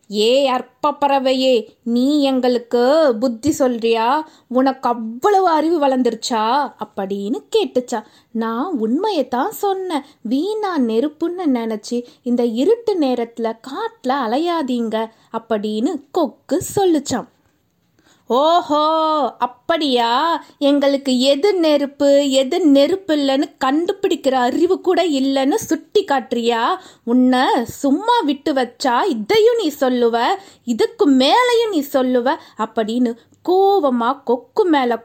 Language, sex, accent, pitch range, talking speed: Tamil, female, native, 240-345 Hz, 95 wpm